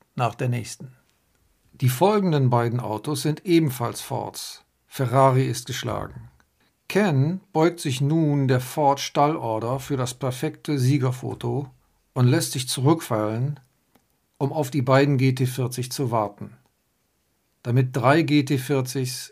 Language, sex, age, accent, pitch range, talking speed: German, male, 50-69, German, 130-155 Hz, 120 wpm